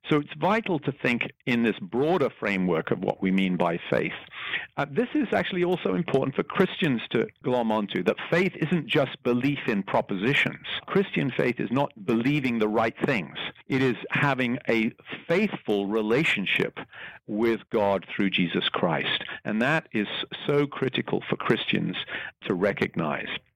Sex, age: male, 50-69